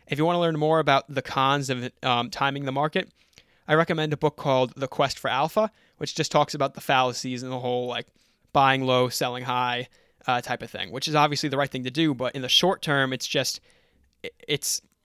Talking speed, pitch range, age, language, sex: 225 wpm, 130-155 Hz, 20-39, English, male